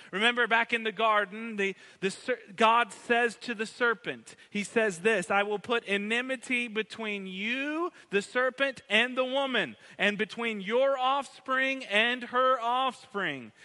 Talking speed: 145 wpm